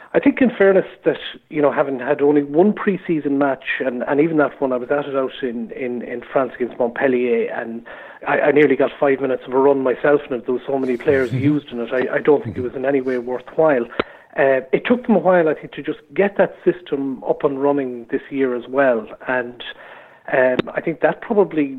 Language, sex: English, male